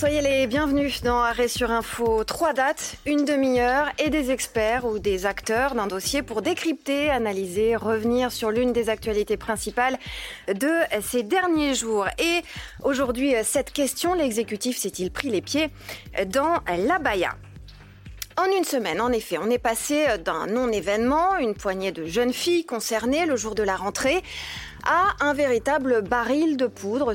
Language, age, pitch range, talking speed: French, 30-49, 205-275 Hz, 155 wpm